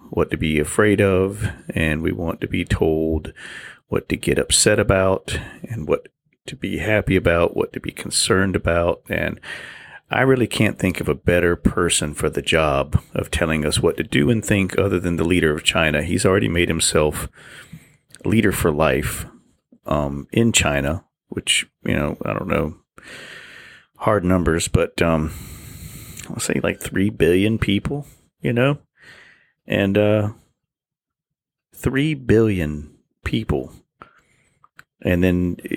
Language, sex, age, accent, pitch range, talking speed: English, male, 40-59, American, 80-115 Hz, 150 wpm